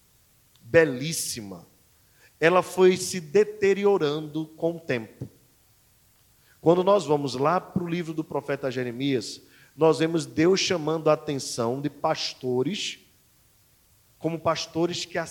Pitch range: 135-185 Hz